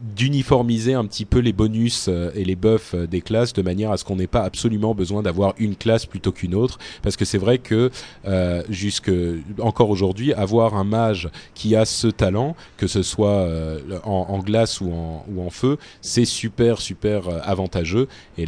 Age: 30-49